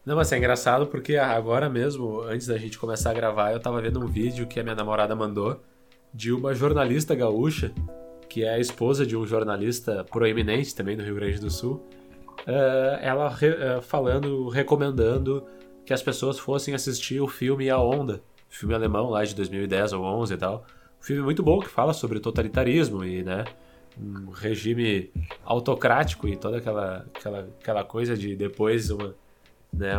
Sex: male